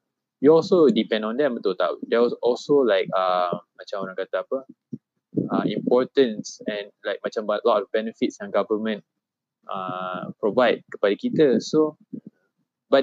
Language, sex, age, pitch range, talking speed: English, male, 20-39, 110-165 Hz, 150 wpm